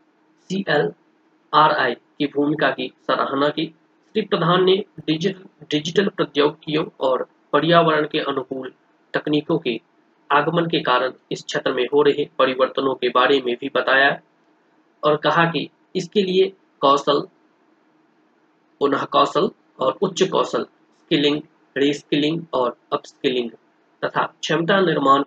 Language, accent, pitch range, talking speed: Hindi, native, 145-190 Hz, 70 wpm